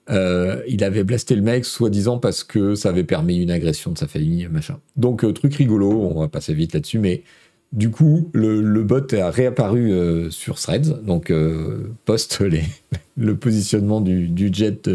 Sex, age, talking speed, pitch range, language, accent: male, 40-59, 185 wpm, 100-150 Hz, French, French